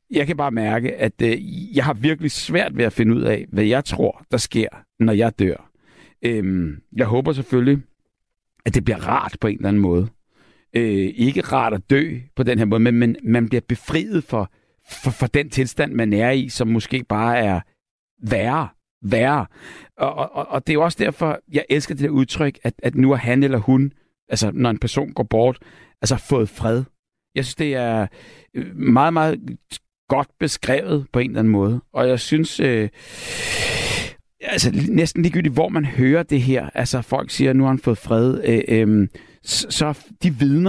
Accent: native